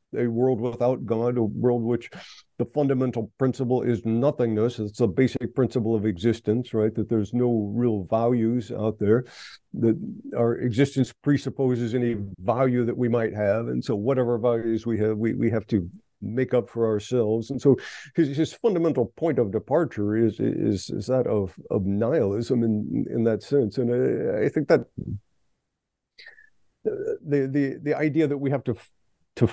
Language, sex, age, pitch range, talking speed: English, male, 50-69, 115-135 Hz, 170 wpm